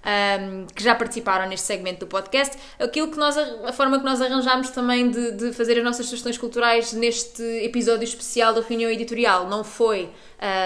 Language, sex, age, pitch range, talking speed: Portuguese, female, 20-39, 210-260 Hz, 185 wpm